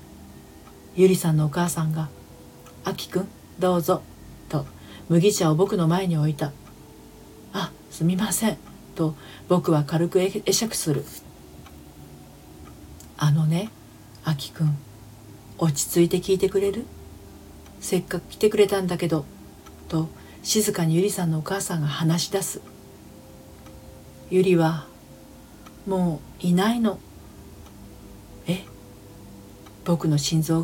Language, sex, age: Japanese, female, 40-59